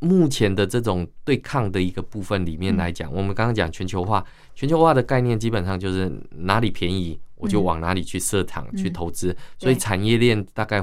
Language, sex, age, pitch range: Chinese, male, 20-39, 90-115 Hz